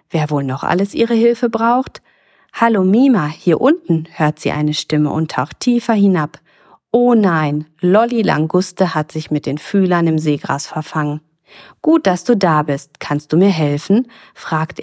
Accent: German